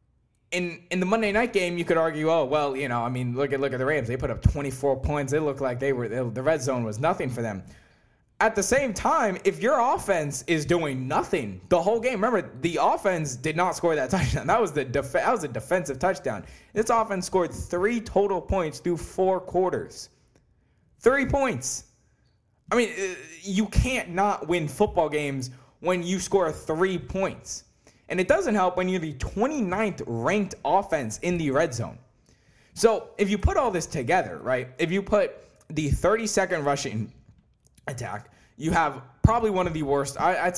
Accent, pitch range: American, 140-195 Hz